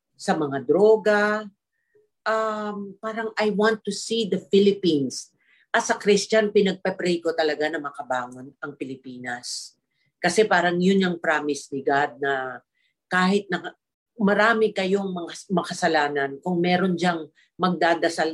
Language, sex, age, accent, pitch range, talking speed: Filipino, female, 50-69, native, 165-215 Hz, 125 wpm